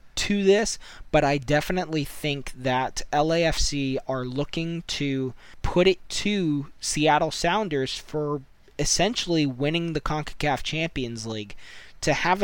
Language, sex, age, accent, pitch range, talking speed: English, male, 20-39, American, 130-155 Hz, 120 wpm